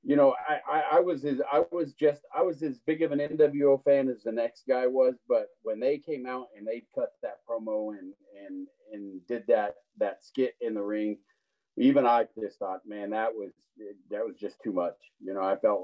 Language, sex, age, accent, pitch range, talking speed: English, male, 40-59, American, 110-185 Hz, 225 wpm